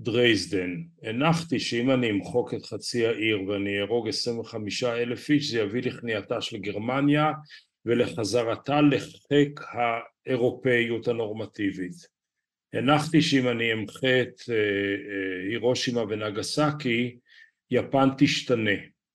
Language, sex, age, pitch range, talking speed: Hebrew, male, 50-69, 110-140 Hz, 105 wpm